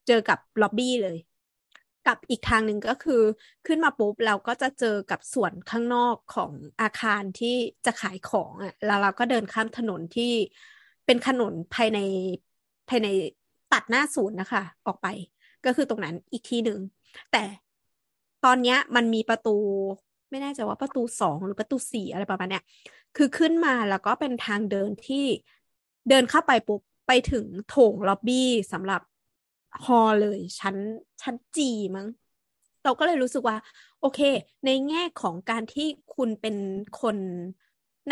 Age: 20-39